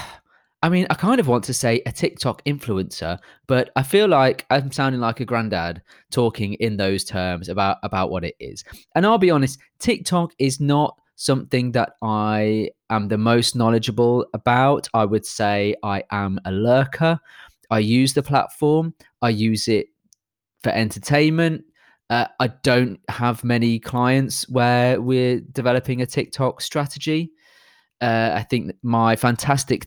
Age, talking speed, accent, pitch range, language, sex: 20-39, 155 wpm, British, 115-155 Hz, English, male